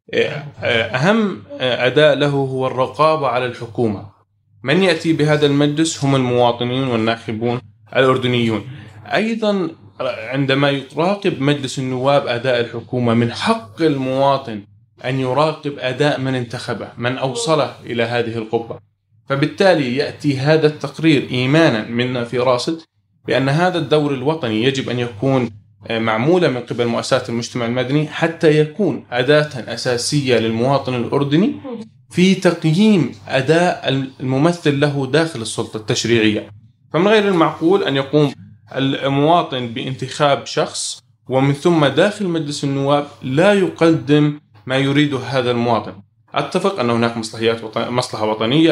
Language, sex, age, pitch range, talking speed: Arabic, male, 20-39, 115-150 Hz, 115 wpm